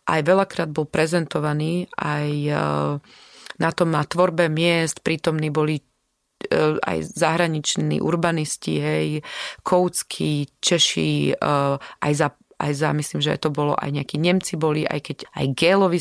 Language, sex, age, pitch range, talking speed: Slovak, female, 30-49, 150-180 Hz, 130 wpm